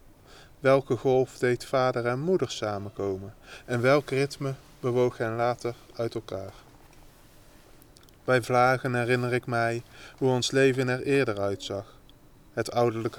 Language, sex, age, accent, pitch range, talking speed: Dutch, male, 20-39, Dutch, 115-145 Hz, 125 wpm